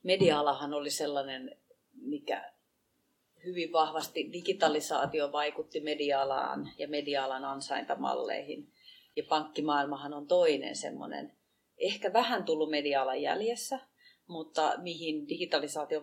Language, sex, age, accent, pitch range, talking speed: Finnish, female, 30-49, native, 145-200 Hz, 95 wpm